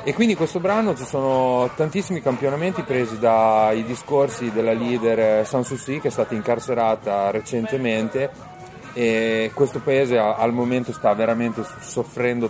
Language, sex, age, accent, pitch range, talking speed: Italian, male, 30-49, native, 115-145 Hz, 140 wpm